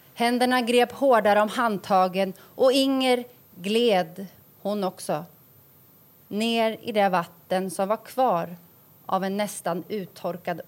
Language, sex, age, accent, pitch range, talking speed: Swedish, female, 30-49, native, 170-245 Hz, 120 wpm